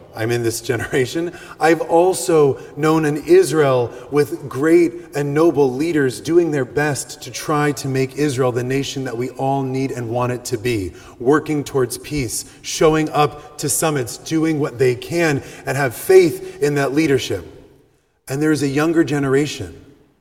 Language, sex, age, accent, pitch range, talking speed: English, male, 30-49, American, 140-220 Hz, 165 wpm